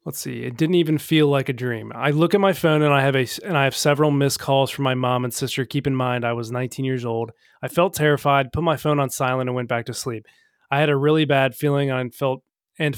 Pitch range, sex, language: 130-150 Hz, male, English